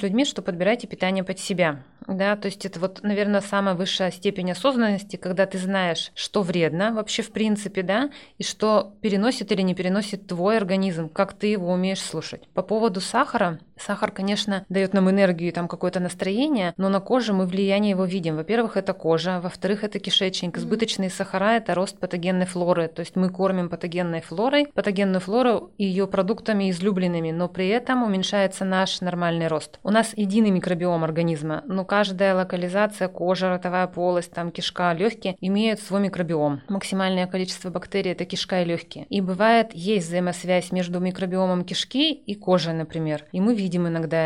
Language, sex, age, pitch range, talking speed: Russian, female, 20-39, 180-205 Hz, 170 wpm